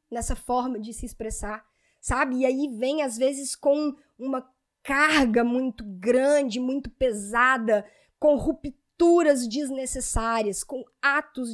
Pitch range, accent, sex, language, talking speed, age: 230-295 Hz, Brazilian, female, Portuguese, 120 wpm, 10-29